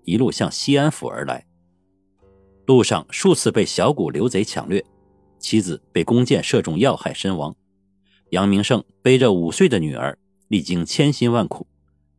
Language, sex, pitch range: Chinese, male, 95-145 Hz